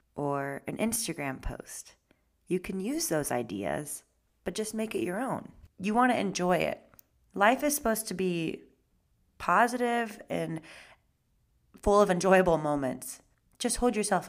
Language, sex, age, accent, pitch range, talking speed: English, female, 20-39, American, 150-190 Hz, 145 wpm